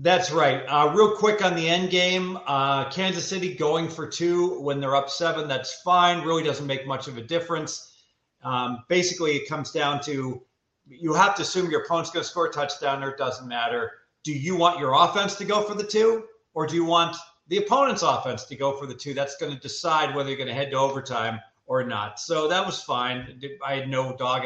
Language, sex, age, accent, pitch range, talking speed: English, male, 40-59, American, 130-170 Hz, 225 wpm